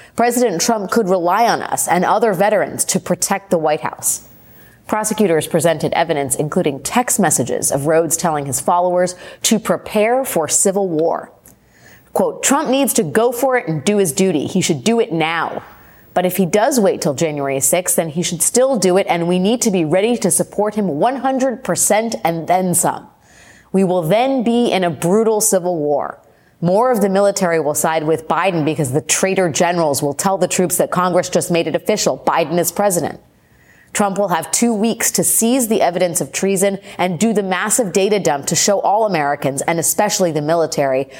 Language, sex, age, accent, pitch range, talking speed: English, female, 30-49, American, 165-210 Hz, 195 wpm